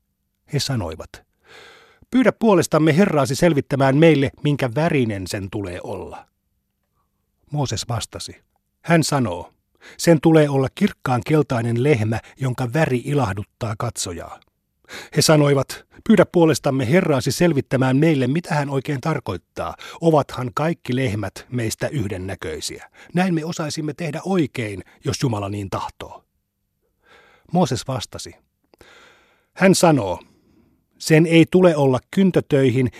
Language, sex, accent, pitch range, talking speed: Finnish, male, native, 115-155 Hz, 110 wpm